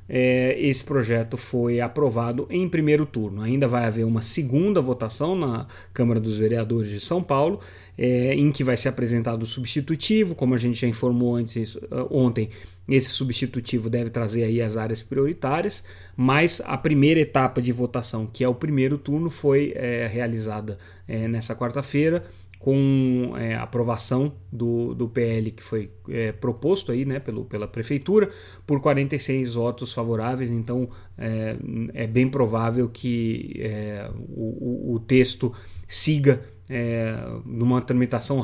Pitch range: 115-135 Hz